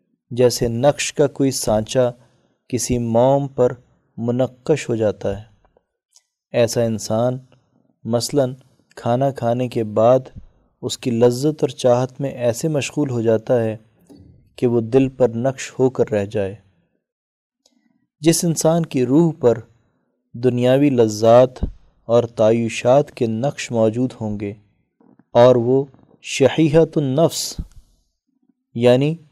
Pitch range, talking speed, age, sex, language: 115-145 Hz, 120 wpm, 20-39, male, Urdu